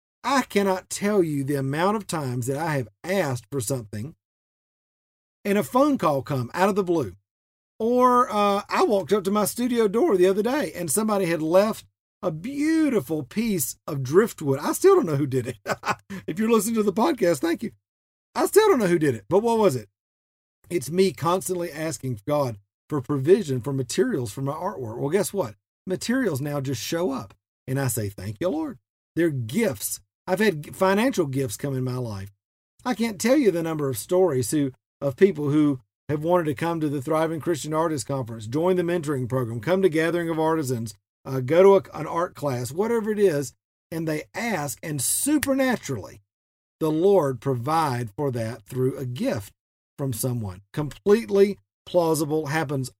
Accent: American